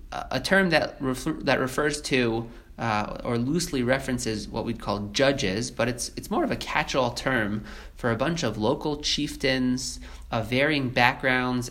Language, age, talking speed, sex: English, 30-49, 165 wpm, male